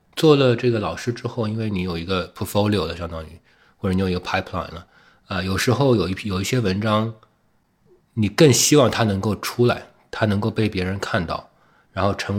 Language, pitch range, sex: Chinese, 95-115 Hz, male